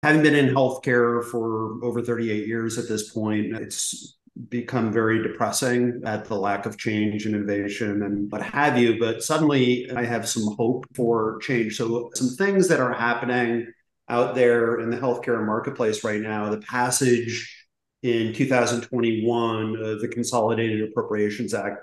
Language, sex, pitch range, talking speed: English, male, 110-120 Hz, 155 wpm